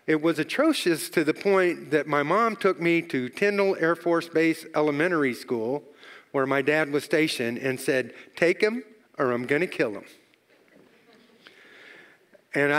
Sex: male